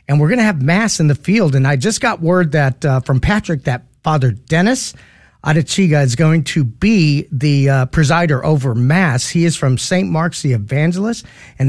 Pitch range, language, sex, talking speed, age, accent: 135-180 Hz, English, male, 200 wpm, 40-59, American